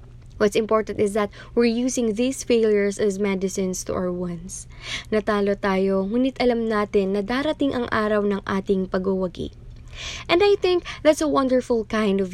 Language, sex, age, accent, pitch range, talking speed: Filipino, female, 20-39, native, 185-225 Hz, 160 wpm